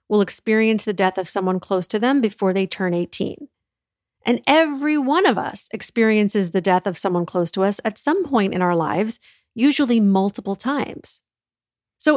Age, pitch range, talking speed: 40-59, 185-245 Hz, 180 wpm